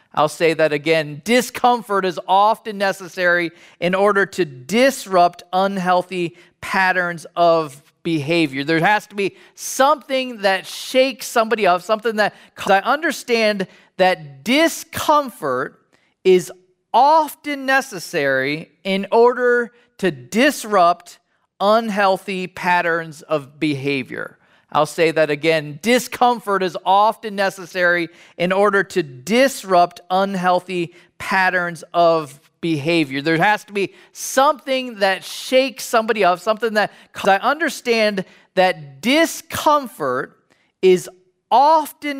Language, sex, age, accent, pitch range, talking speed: English, male, 40-59, American, 170-230 Hz, 105 wpm